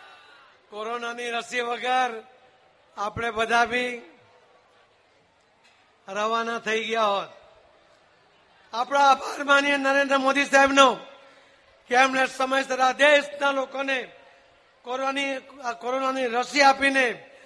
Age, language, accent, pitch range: 60-79, Gujarati, native, 225-270 Hz